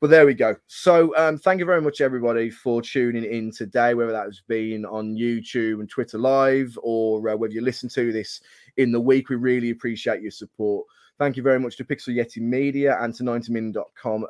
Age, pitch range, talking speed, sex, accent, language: 20-39, 110-130 Hz, 215 wpm, male, British, English